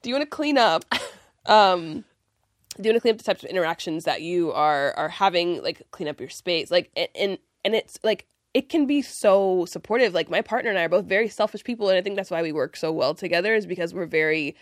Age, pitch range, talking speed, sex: 20-39, 180-255 Hz, 255 wpm, female